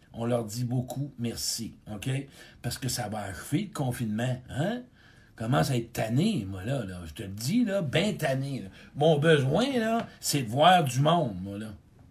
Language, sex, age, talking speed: French, male, 60-79, 195 wpm